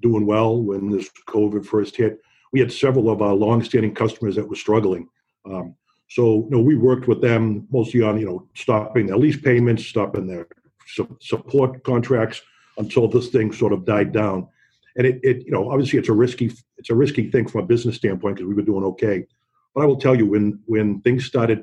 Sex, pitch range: male, 105-120 Hz